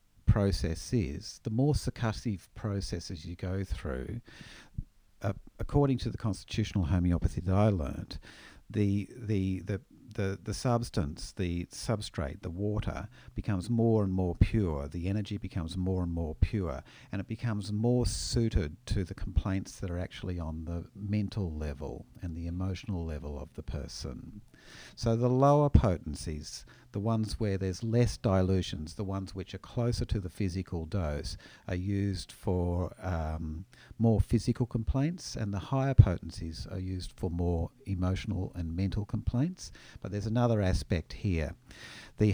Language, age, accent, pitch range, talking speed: English, 50-69, Australian, 90-110 Hz, 150 wpm